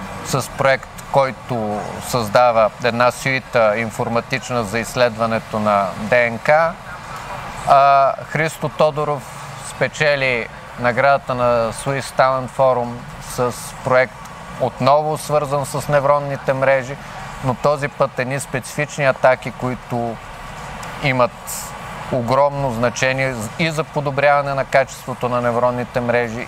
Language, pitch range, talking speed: Bulgarian, 120-145 Hz, 100 wpm